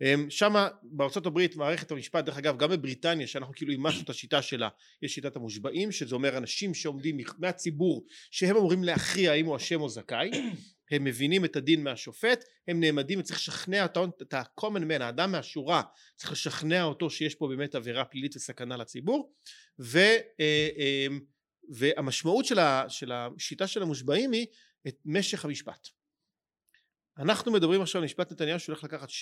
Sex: male